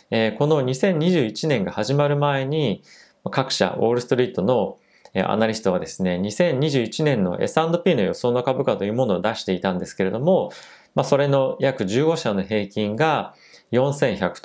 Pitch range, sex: 100-150 Hz, male